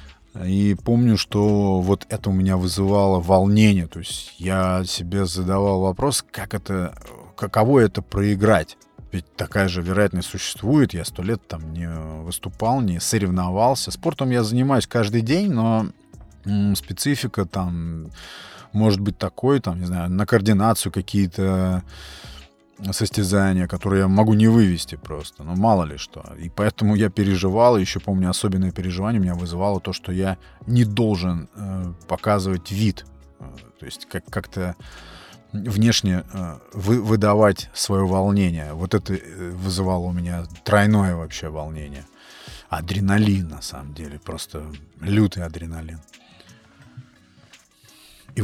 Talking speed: 130 wpm